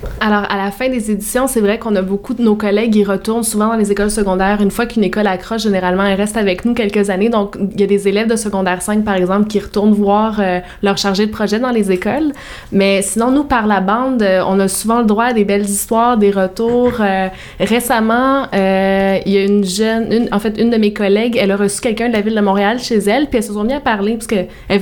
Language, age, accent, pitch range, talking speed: French, 20-39, Canadian, 195-225 Hz, 260 wpm